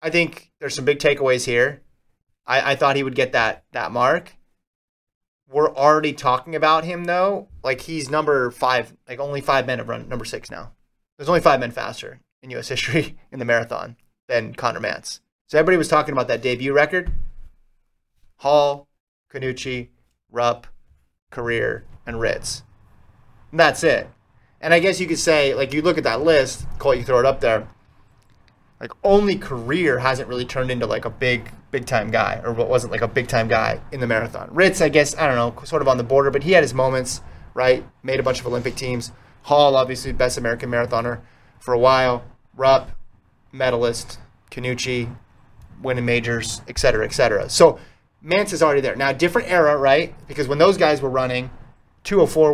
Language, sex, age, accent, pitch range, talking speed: English, male, 30-49, American, 120-145 Hz, 185 wpm